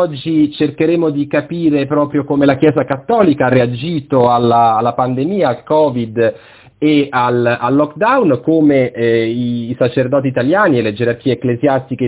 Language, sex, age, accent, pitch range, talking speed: Italian, male, 40-59, native, 120-145 Hz, 150 wpm